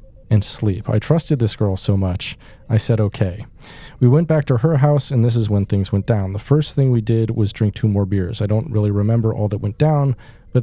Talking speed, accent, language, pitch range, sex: 245 wpm, American, English, 105-125 Hz, male